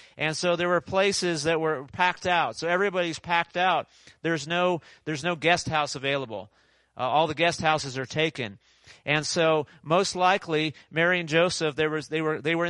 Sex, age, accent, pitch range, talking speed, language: male, 40-59, American, 140-170 Hz, 190 wpm, English